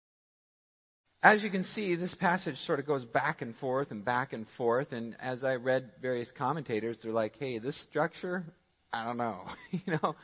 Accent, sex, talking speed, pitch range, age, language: American, male, 190 wpm, 115-155 Hz, 40-59, English